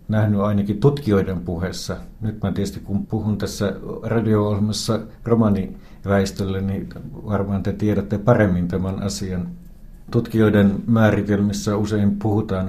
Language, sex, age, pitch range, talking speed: Finnish, male, 60-79, 95-105 Hz, 105 wpm